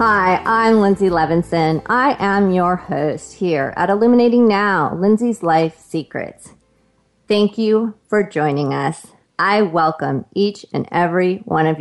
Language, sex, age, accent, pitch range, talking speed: English, female, 30-49, American, 165-215 Hz, 135 wpm